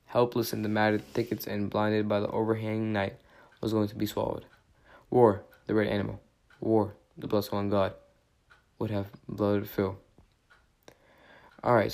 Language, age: English, 20-39